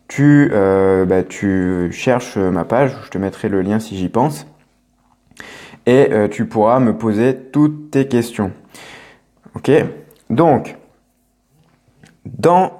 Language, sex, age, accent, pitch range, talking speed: English, male, 20-39, French, 105-135 Hz, 125 wpm